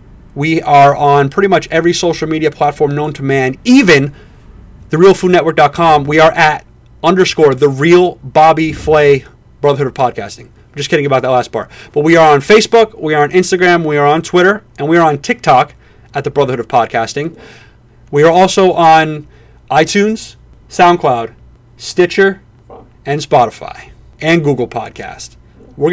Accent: American